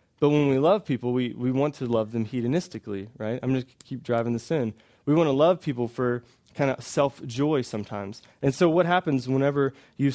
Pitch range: 125-165 Hz